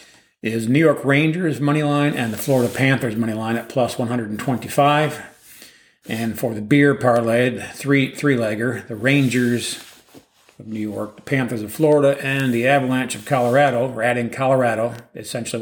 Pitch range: 115-135 Hz